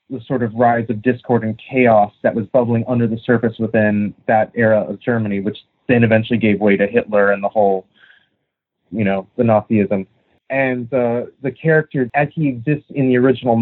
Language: English